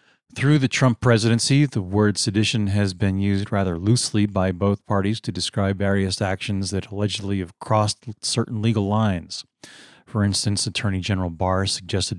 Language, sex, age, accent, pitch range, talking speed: English, male, 40-59, American, 95-115 Hz, 160 wpm